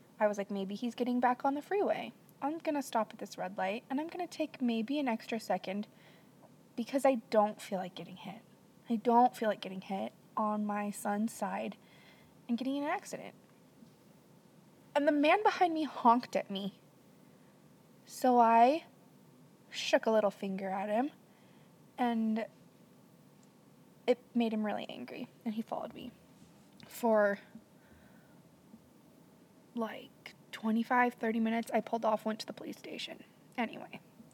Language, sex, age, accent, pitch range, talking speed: English, female, 20-39, American, 210-250 Hz, 150 wpm